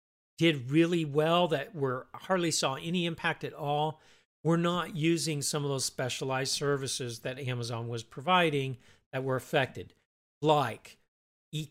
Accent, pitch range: American, 130-170 Hz